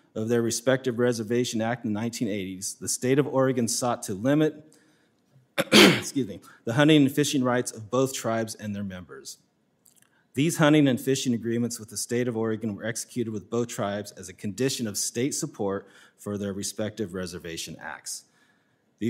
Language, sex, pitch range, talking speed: English, male, 110-135 Hz, 175 wpm